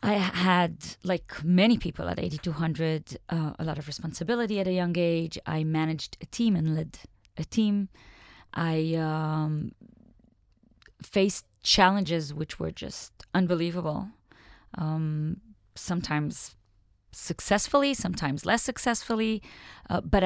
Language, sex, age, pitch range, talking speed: Hebrew, female, 20-39, 155-195 Hz, 120 wpm